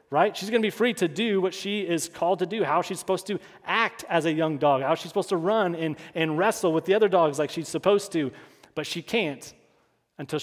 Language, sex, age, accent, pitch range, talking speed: English, male, 30-49, American, 150-190 Hz, 250 wpm